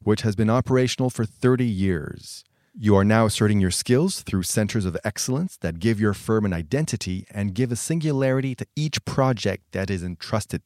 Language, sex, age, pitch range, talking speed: French, male, 30-49, 100-125 Hz, 185 wpm